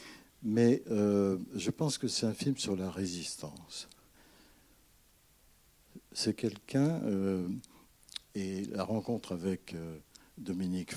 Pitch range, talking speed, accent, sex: 95-115 Hz, 110 wpm, French, male